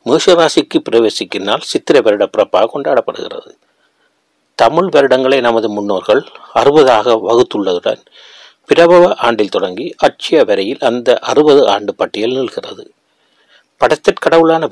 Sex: male